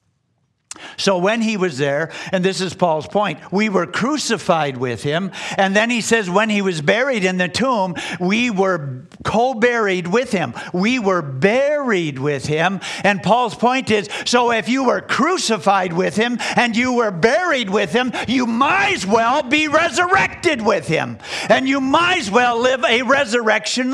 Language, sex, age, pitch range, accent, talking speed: English, male, 50-69, 190-240 Hz, American, 175 wpm